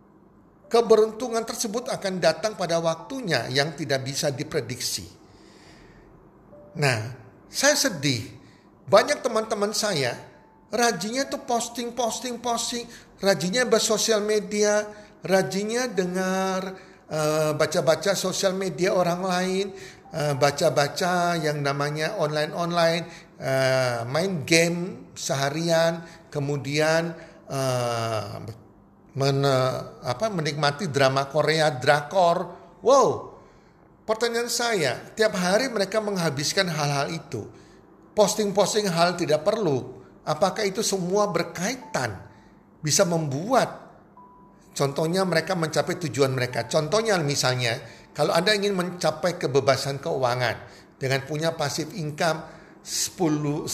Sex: male